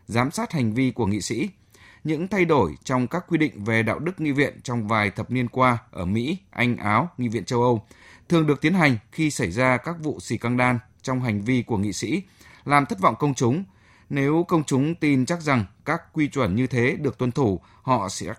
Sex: male